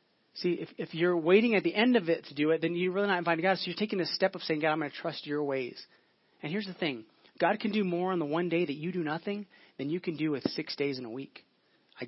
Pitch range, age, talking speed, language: 150-185 Hz, 30-49, 300 wpm, English